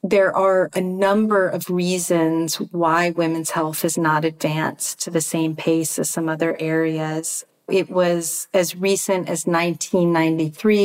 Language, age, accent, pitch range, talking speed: English, 40-59, American, 155-180 Hz, 150 wpm